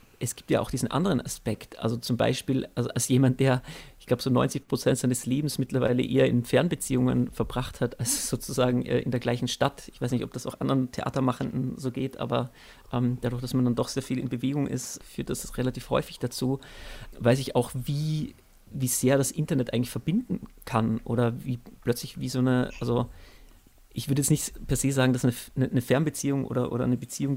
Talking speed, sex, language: 205 wpm, male, German